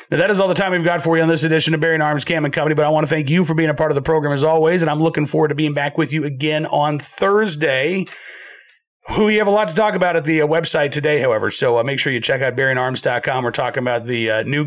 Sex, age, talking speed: male, 40-59, 300 wpm